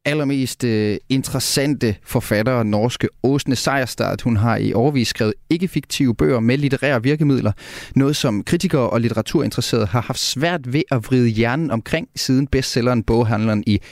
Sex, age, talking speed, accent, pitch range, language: male, 30-49, 145 wpm, native, 110-140 Hz, Danish